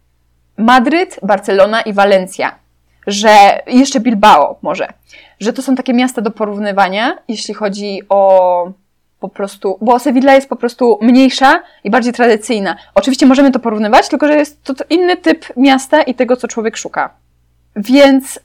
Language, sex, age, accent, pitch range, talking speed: Polish, female, 20-39, native, 205-270 Hz, 150 wpm